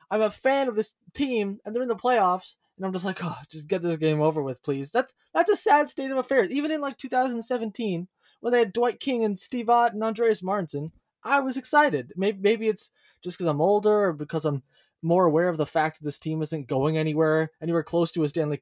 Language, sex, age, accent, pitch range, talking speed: English, male, 20-39, American, 150-205 Hz, 240 wpm